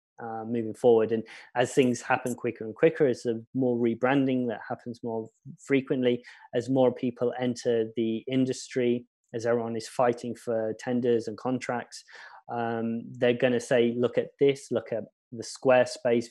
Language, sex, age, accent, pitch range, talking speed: English, male, 20-39, British, 115-125 Hz, 165 wpm